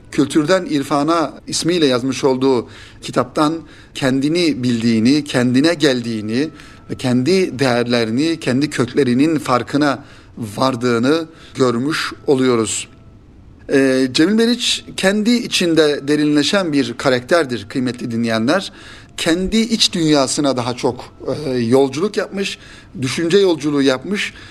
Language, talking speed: Turkish, 90 wpm